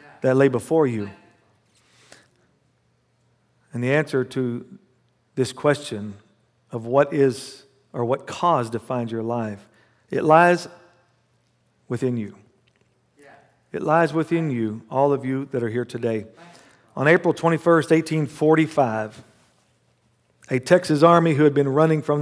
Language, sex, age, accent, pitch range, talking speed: English, male, 50-69, American, 125-160 Hz, 125 wpm